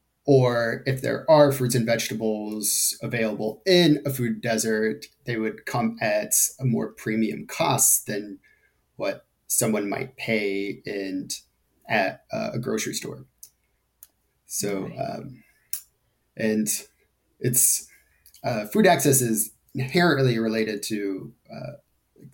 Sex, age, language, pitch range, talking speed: male, 30-49, English, 105-130 Hz, 115 wpm